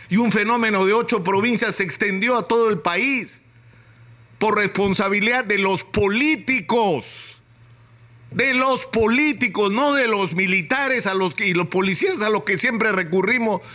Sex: male